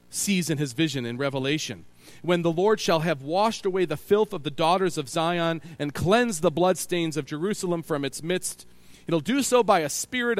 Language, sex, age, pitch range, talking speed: English, male, 40-59, 105-155 Hz, 210 wpm